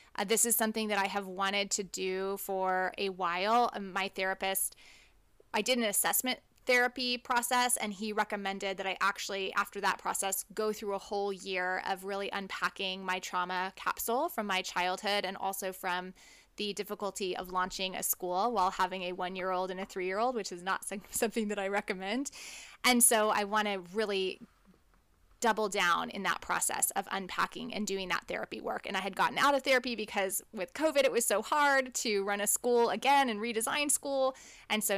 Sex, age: female, 20-39